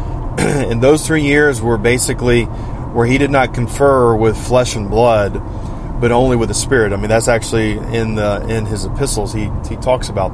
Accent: American